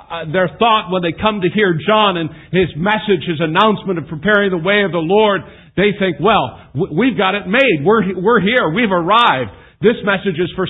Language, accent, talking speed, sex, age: English, American, 210 wpm, male, 50-69